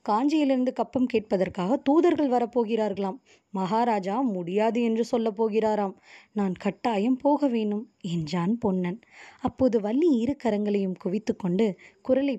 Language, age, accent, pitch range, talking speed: Tamil, 20-39, native, 200-270 Hz, 100 wpm